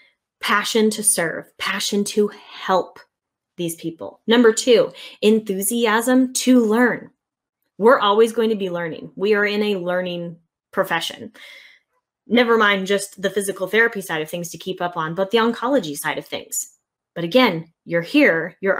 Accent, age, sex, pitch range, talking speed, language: American, 10-29, female, 185-235 Hz, 155 wpm, English